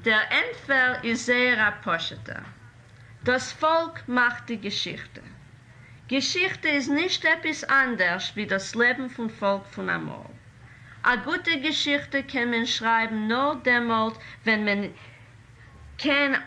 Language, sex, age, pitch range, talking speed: English, female, 50-69, 175-260 Hz, 120 wpm